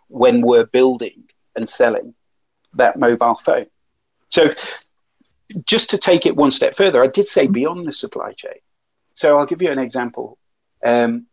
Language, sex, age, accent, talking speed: English, male, 40-59, British, 160 wpm